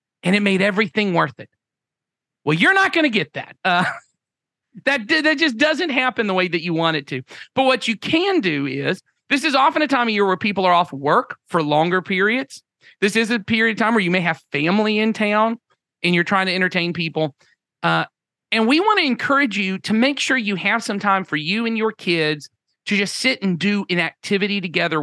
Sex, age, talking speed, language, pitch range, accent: male, 40-59, 225 wpm, English, 165-230 Hz, American